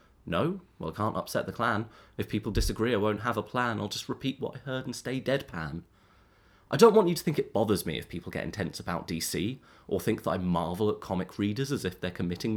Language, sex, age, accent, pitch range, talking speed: English, male, 30-49, British, 100-135 Hz, 245 wpm